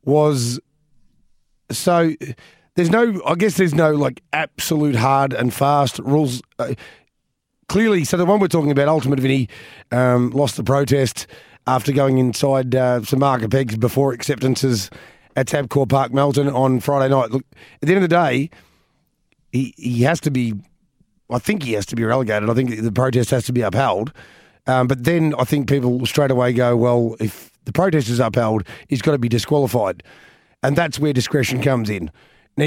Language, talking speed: English, 180 wpm